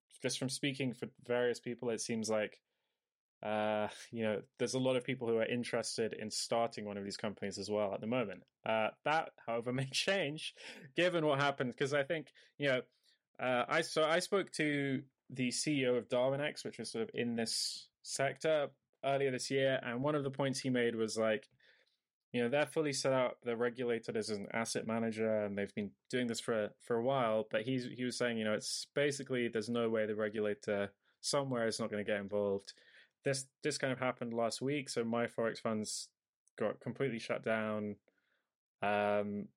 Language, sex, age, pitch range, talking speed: English, male, 20-39, 110-135 Hz, 200 wpm